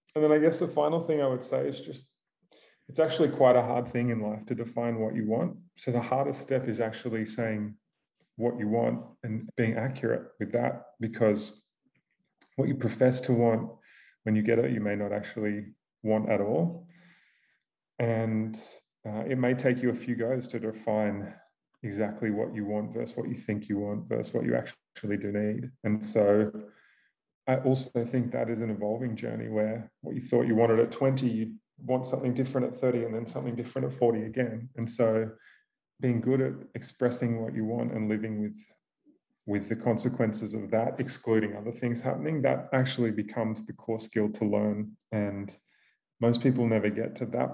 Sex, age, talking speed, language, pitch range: male, 30-49, 190 wpm, English, 110-125 Hz